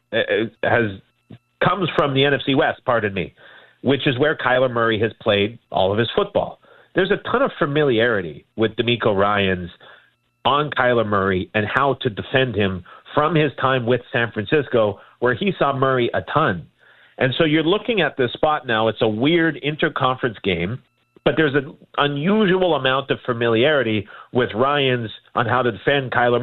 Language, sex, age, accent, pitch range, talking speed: English, male, 40-59, American, 110-145 Hz, 170 wpm